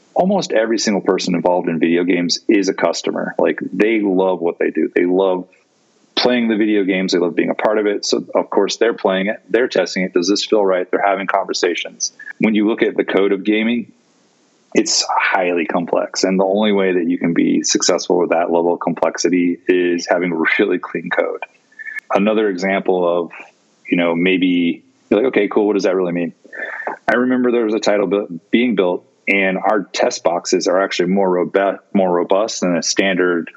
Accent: American